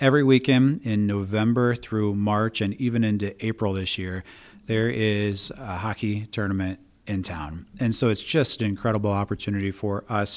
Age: 30-49